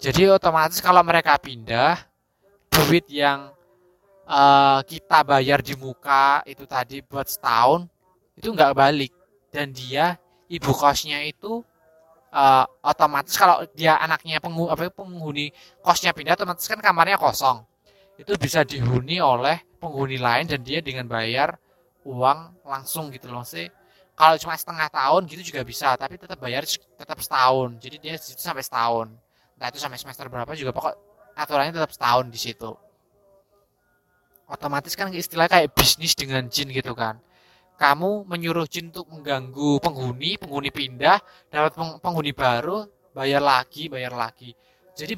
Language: Indonesian